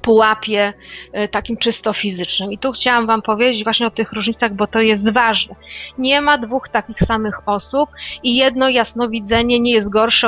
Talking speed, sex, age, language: 170 wpm, female, 30-49, Polish